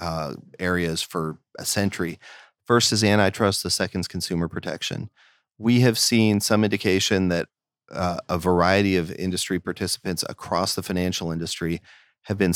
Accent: American